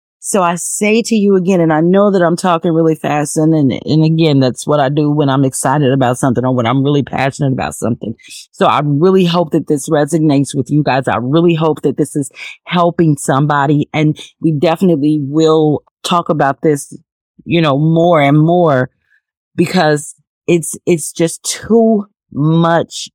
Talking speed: 180 wpm